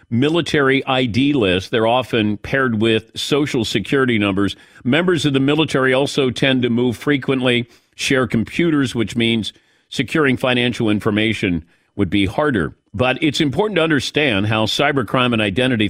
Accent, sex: American, male